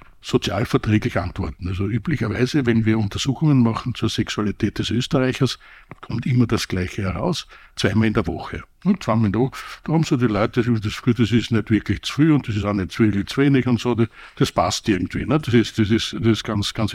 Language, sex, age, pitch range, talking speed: German, male, 60-79, 105-125 Hz, 190 wpm